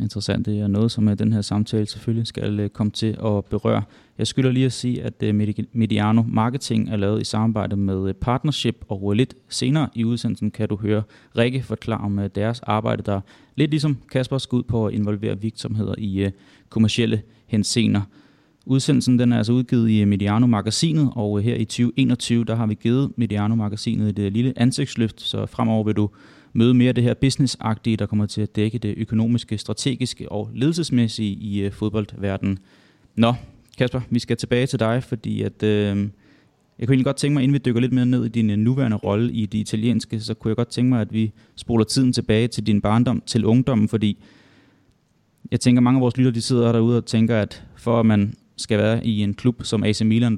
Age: 30-49